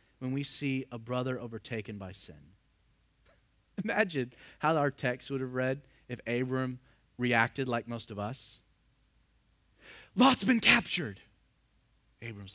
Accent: American